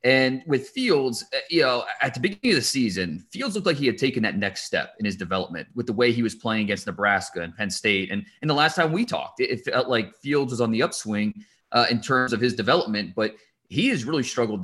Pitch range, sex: 105-130 Hz, male